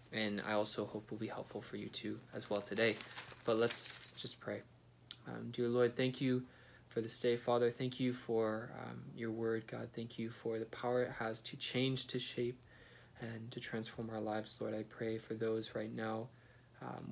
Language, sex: English, male